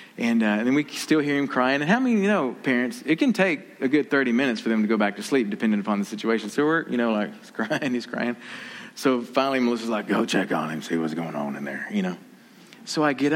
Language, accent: English, American